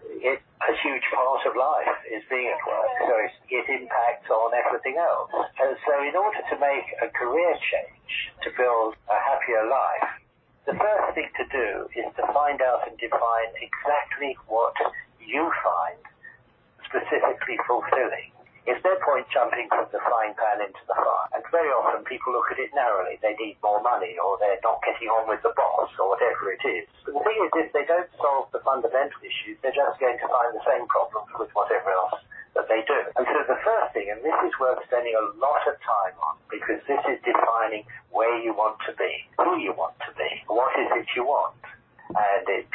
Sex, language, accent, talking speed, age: male, English, British, 200 wpm, 60-79